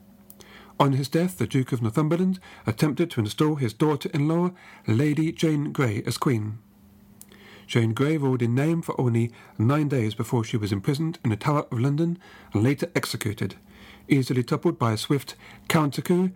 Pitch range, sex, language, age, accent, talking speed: 115-160 Hz, male, English, 40-59, British, 160 wpm